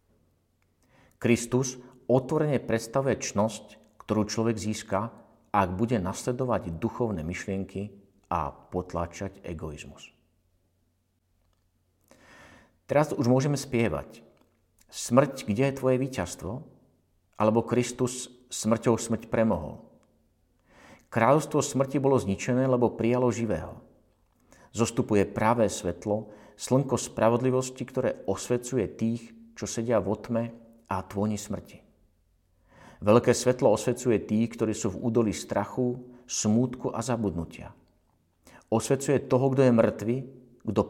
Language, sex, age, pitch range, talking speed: Slovak, male, 50-69, 95-125 Hz, 100 wpm